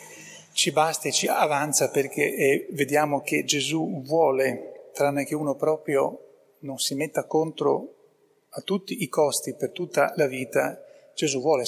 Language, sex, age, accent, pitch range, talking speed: Italian, male, 40-59, native, 145-200 Hz, 150 wpm